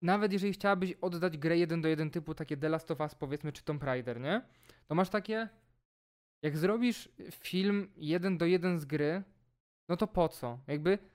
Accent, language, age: native, Polish, 20-39